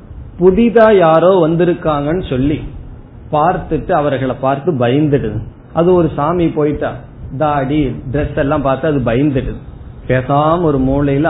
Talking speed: 95 wpm